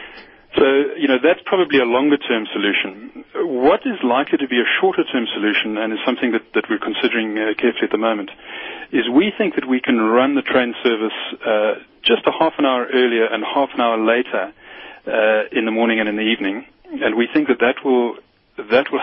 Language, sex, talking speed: English, male, 205 wpm